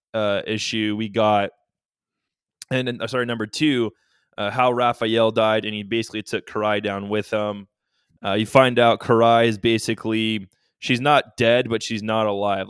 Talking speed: 170 wpm